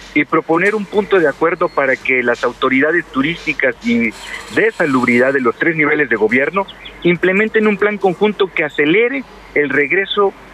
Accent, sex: Mexican, male